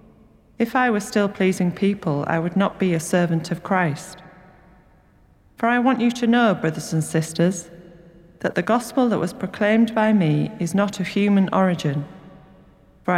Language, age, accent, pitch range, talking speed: English, 40-59, British, 170-200 Hz, 170 wpm